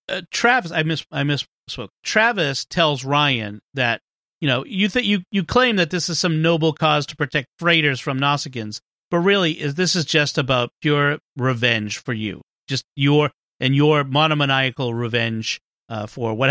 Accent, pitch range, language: American, 125-180 Hz, English